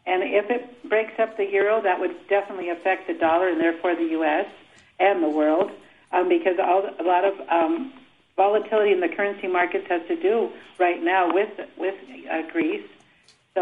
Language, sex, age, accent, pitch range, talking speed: English, female, 60-79, American, 180-220 Hz, 185 wpm